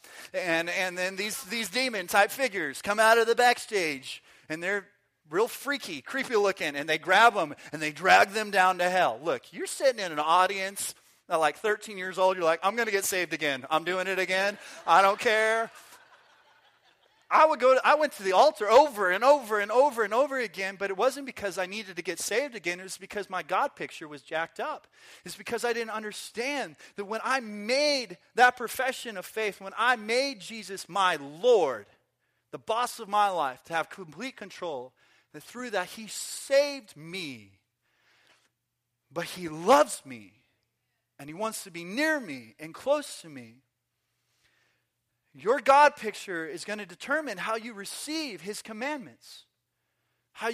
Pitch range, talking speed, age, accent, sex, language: 175-245 Hz, 180 wpm, 30-49, American, male, English